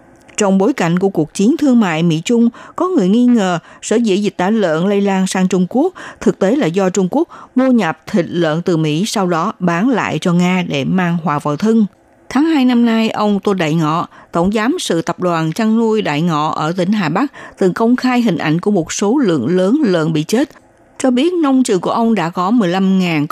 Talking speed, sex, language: 230 wpm, female, Vietnamese